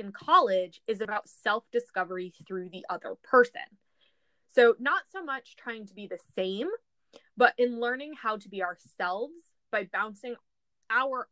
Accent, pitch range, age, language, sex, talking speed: American, 195-245 Hz, 20-39, English, female, 150 wpm